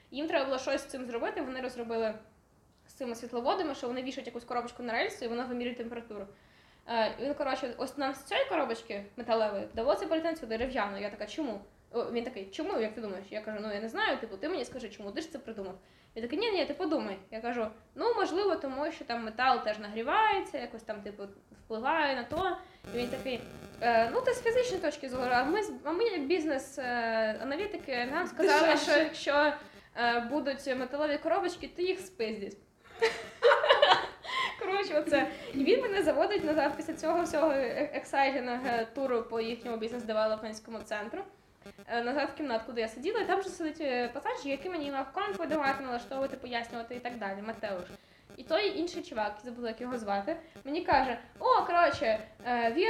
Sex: female